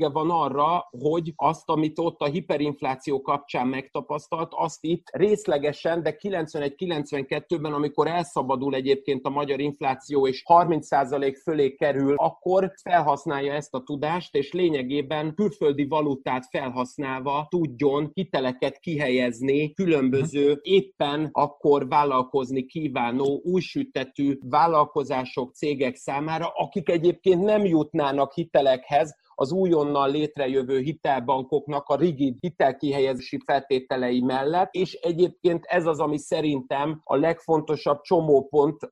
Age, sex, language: 30-49, male, Hungarian